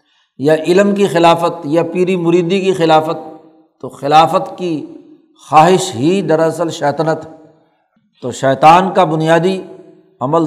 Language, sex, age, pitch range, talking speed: Urdu, male, 60-79, 150-190 Hz, 120 wpm